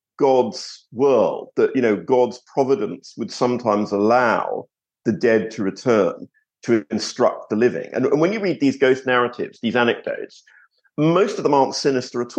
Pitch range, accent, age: 120-165 Hz, British, 50-69